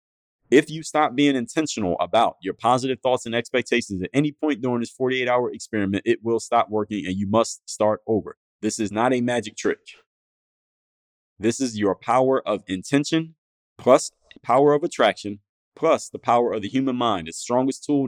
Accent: American